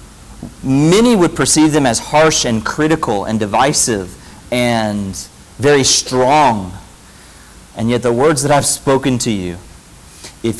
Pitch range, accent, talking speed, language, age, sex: 110-155 Hz, American, 130 wpm, English, 40-59, male